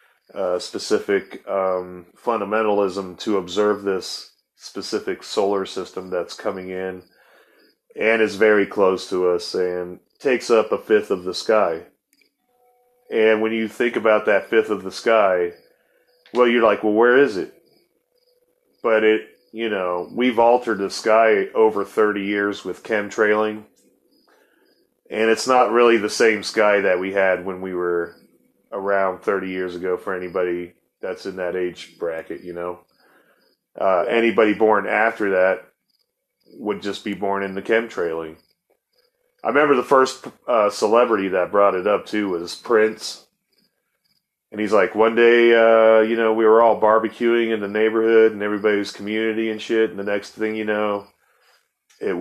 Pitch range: 95-115 Hz